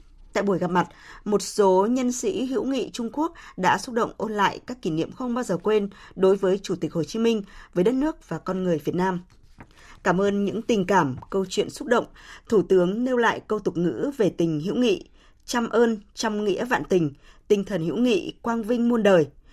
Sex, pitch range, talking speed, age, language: female, 175-225 Hz, 225 wpm, 20-39, Vietnamese